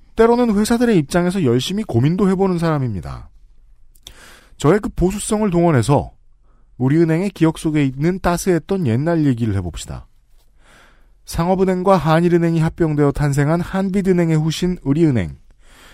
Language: Korean